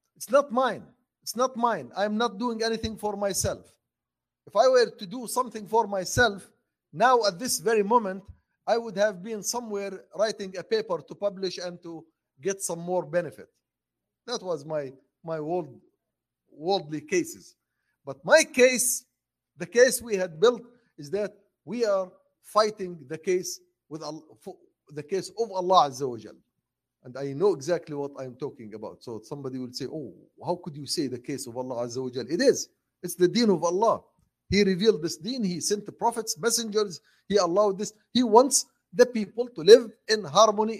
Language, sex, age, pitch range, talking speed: English, male, 50-69, 175-230 Hz, 180 wpm